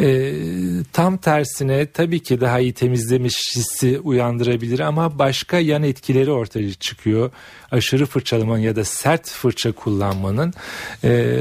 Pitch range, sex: 115-145 Hz, male